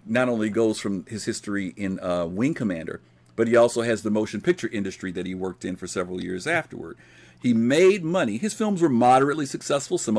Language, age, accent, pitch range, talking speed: English, 50-69, American, 105-135 Hz, 205 wpm